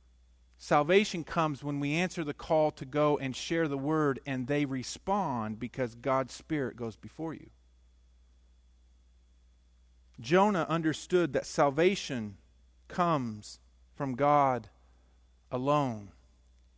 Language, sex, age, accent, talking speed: English, male, 50-69, American, 105 wpm